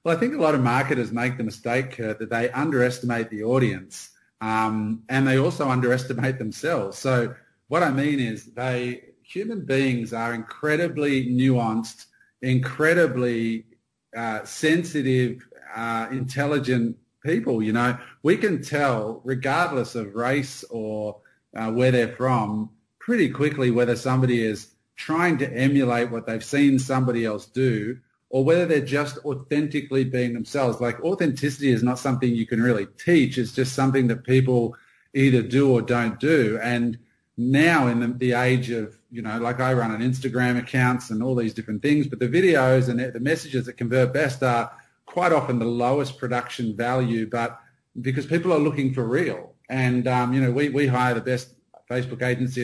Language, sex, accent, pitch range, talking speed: English, male, Australian, 115-135 Hz, 165 wpm